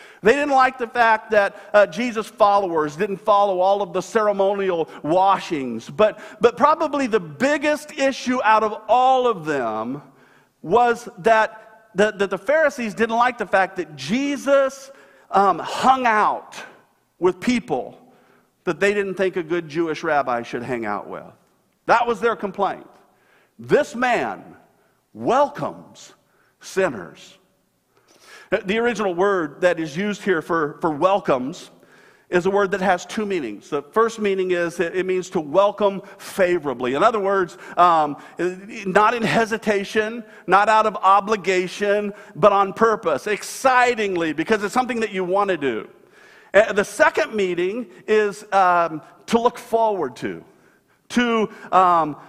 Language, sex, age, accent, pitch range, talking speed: English, male, 50-69, American, 185-235 Hz, 145 wpm